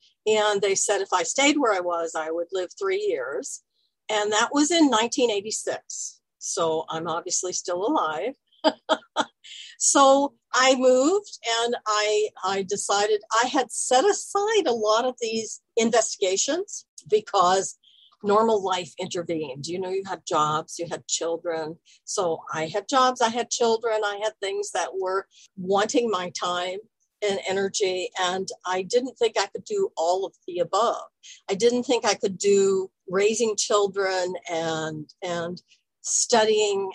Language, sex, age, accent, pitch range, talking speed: English, female, 50-69, American, 180-235 Hz, 150 wpm